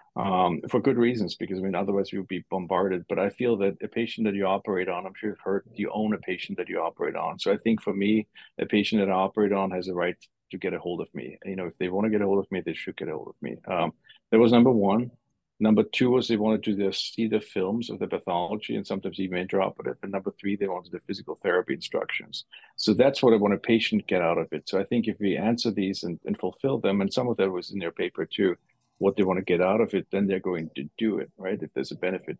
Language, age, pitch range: English, 50-69, 95-110 Hz